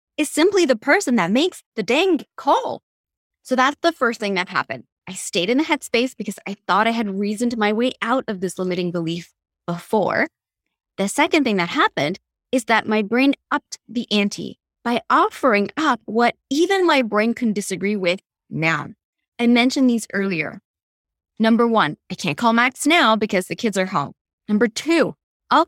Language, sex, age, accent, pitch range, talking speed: English, female, 20-39, American, 190-260 Hz, 180 wpm